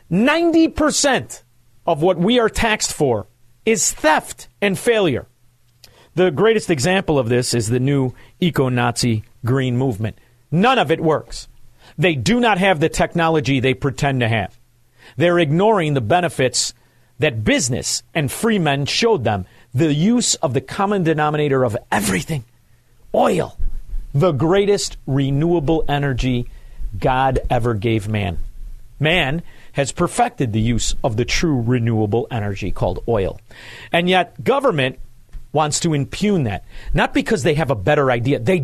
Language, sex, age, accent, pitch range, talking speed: English, male, 40-59, American, 120-175 Hz, 140 wpm